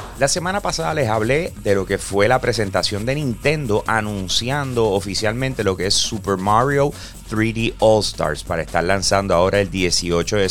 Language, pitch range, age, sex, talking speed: Spanish, 100-130 Hz, 30-49, male, 165 wpm